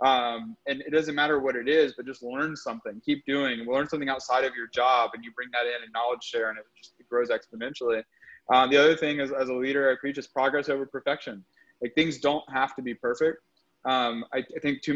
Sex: male